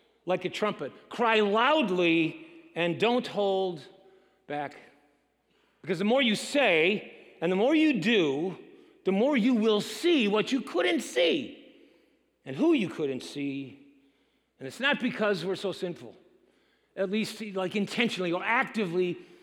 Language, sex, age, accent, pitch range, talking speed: English, male, 50-69, American, 155-215 Hz, 140 wpm